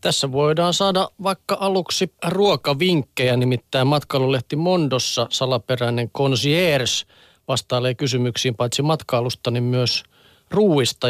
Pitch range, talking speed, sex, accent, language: 125-150 Hz, 95 wpm, male, native, Finnish